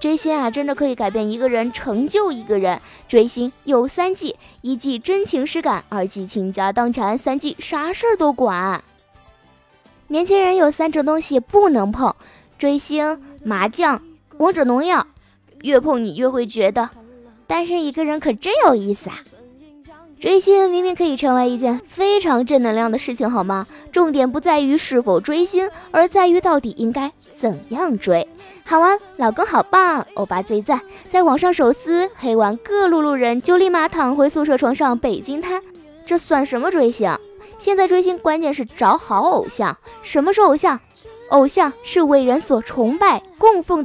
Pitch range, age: 245-355 Hz, 20-39